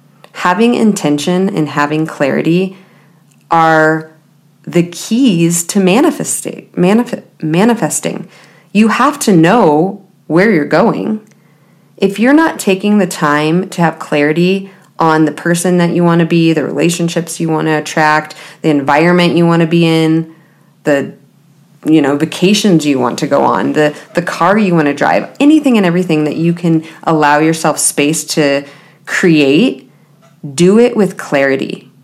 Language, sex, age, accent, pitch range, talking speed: English, female, 30-49, American, 155-190 Hz, 145 wpm